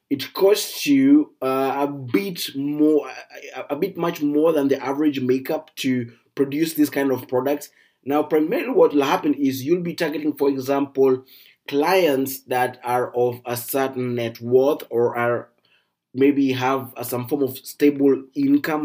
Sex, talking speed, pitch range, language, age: male, 160 wpm, 125-145 Hz, English, 20-39